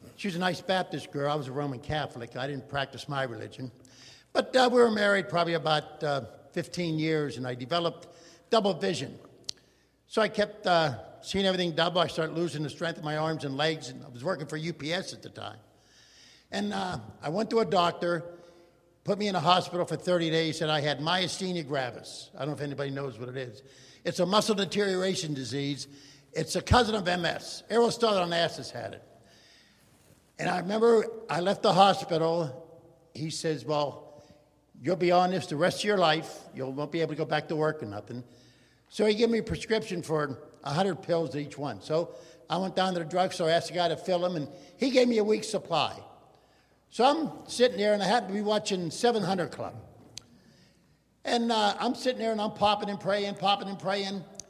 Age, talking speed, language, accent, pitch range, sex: 60-79, 205 wpm, English, American, 145-195 Hz, male